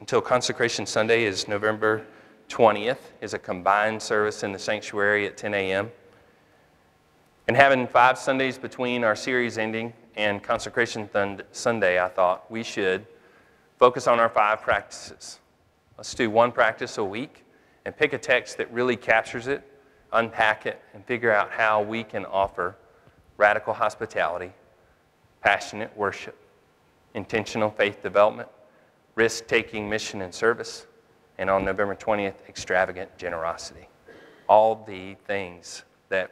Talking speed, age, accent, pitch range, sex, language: 130 wpm, 30-49, American, 95-115 Hz, male, English